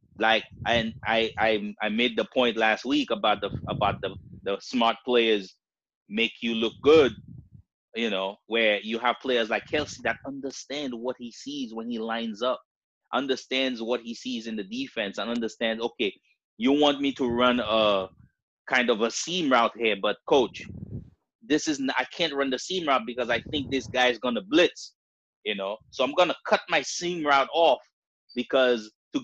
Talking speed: 185 wpm